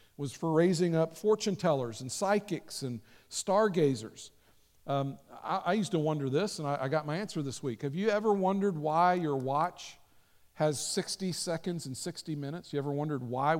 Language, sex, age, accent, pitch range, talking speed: English, male, 50-69, American, 130-180 Hz, 185 wpm